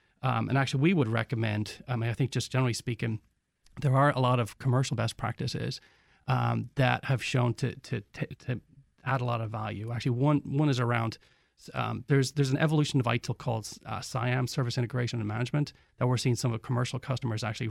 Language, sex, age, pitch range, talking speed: English, male, 40-59, 115-135 Hz, 210 wpm